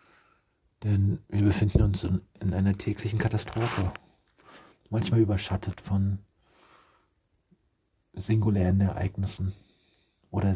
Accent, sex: German, male